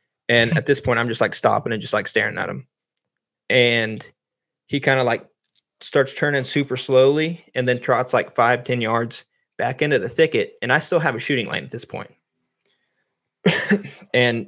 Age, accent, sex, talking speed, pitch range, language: 20-39, American, male, 185 wpm, 120-145 Hz, English